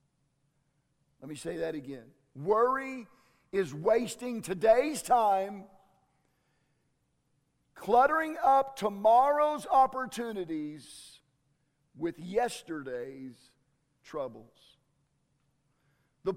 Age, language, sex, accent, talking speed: 50-69, English, male, American, 65 wpm